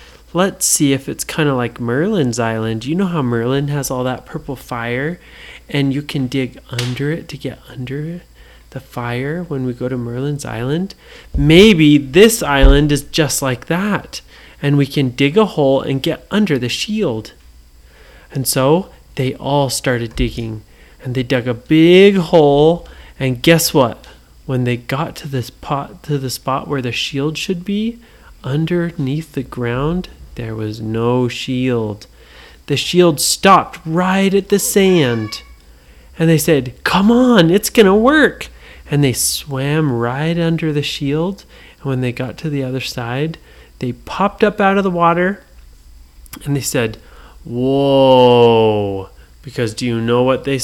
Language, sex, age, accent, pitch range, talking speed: English, male, 30-49, American, 120-165 Hz, 160 wpm